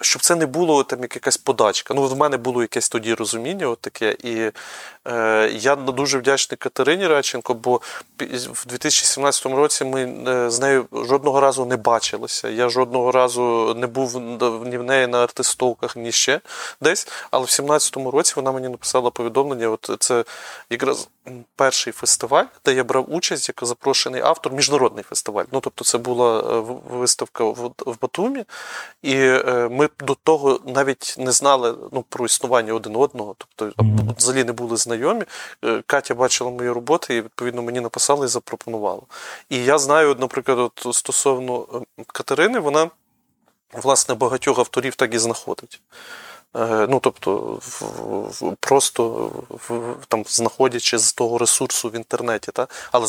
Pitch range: 120-135 Hz